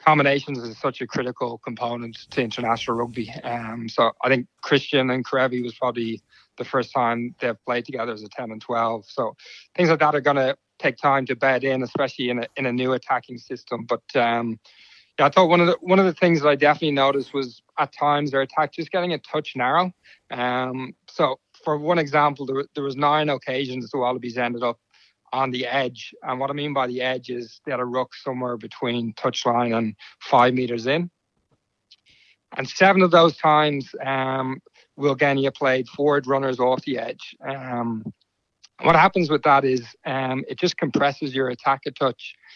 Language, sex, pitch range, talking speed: English, male, 125-145 Hz, 195 wpm